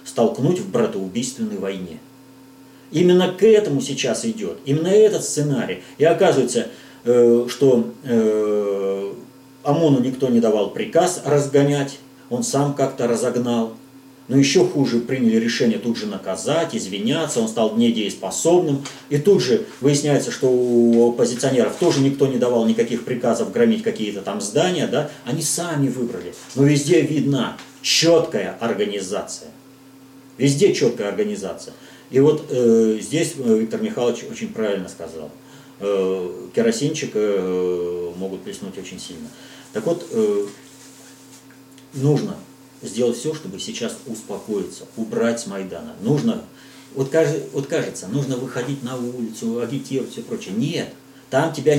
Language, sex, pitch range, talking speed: Russian, male, 120-155 Hz, 125 wpm